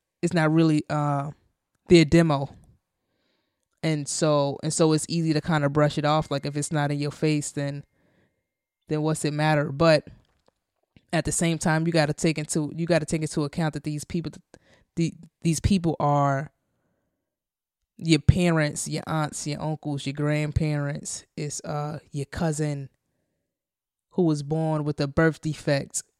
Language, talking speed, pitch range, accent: English, 160 wpm, 145-170 Hz, American